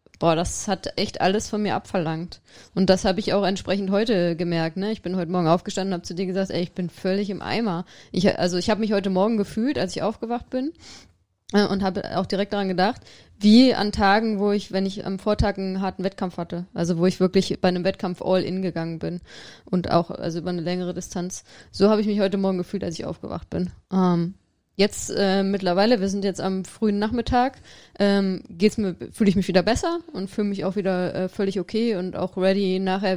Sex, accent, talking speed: female, German, 225 wpm